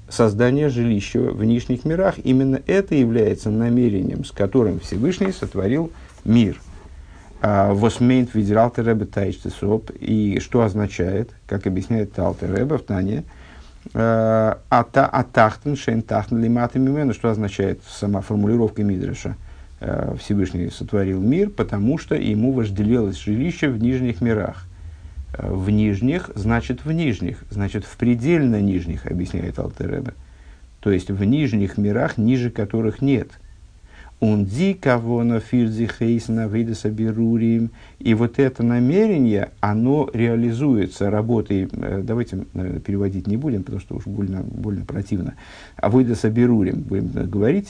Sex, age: male, 50-69